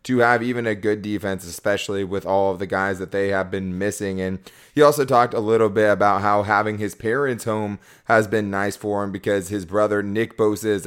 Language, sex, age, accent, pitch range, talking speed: English, male, 20-39, American, 100-110 Hz, 225 wpm